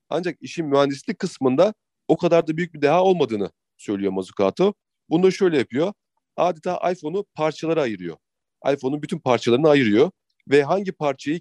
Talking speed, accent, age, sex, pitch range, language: 145 wpm, native, 40-59, male, 125-170 Hz, Turkish